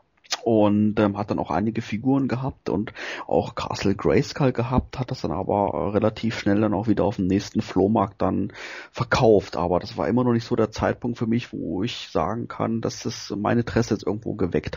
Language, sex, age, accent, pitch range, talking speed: German, male, 30-49, German, 105-125 Hz, 205 wpm